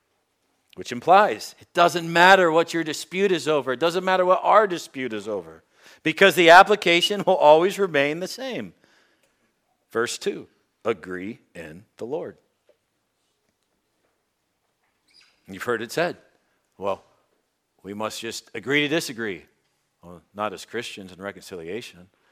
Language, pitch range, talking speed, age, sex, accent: English, 115-185 Hz, 130 wpm, 50-69, male, American